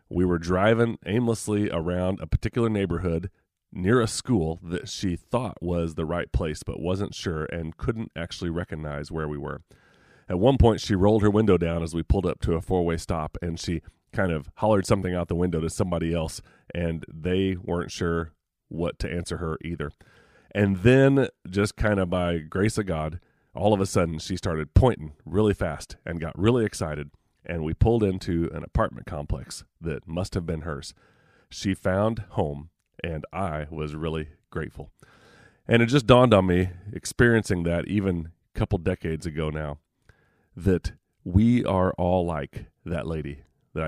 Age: 30-49